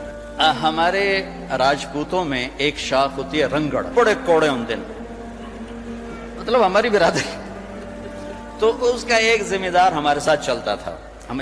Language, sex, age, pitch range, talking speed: Urdu, male, 60-79, 140-225 Hz, 135 wpm